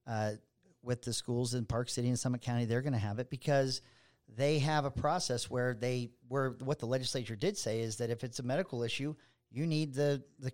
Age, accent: 40-59, American